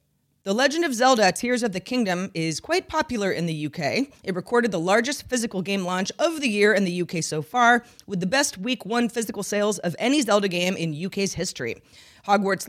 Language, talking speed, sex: English, 210 wpm, female